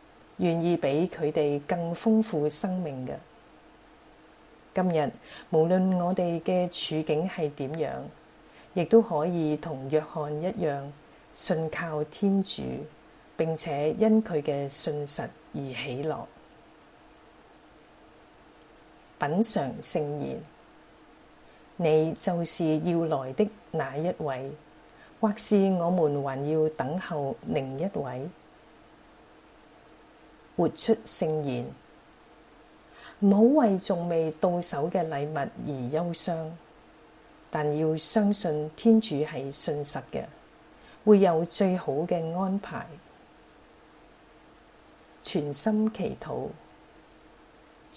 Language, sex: Chinese, female